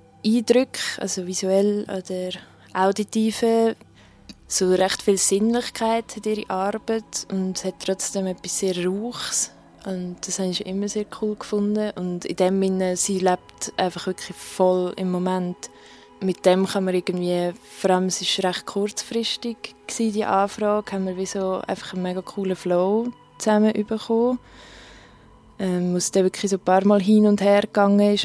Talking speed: 155 wpm